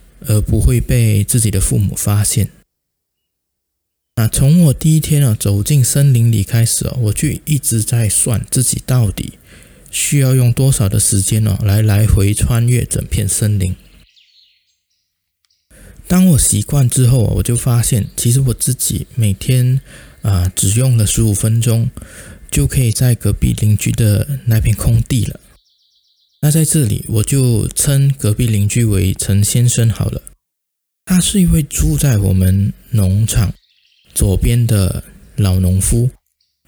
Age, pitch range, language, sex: 20-39, 100-130 Hz, Chinese, male